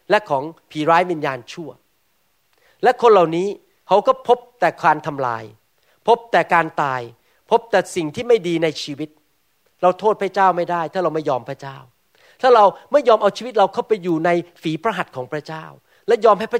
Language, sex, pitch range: Thai, male, 170-245 Hz